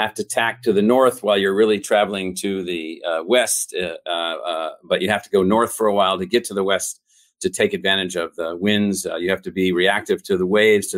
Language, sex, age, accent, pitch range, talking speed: English, male, 50-69, American, 95-110 Hz, 255 wpm